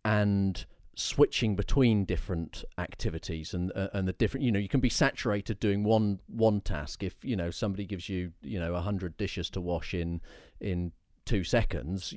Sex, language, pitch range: male, English, 90-115 Hz